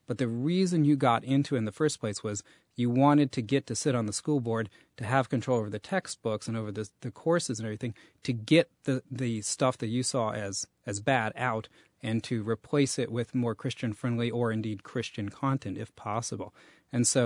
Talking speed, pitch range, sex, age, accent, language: 215 wpm, 110-140 Hz, male, 40-59, American, English